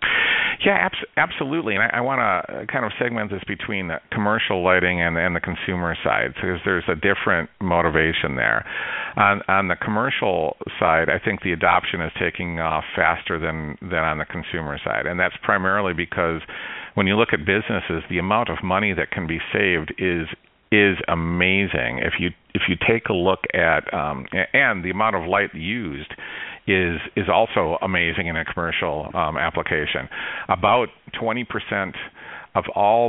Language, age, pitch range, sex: English, 50-69, 80-100 Hz, male